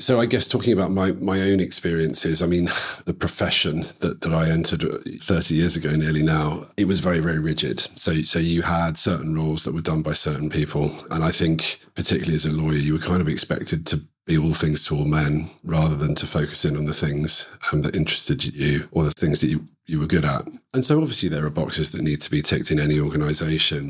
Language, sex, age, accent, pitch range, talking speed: English, male, 40-59, British, 75-85 Hz, 235 wpm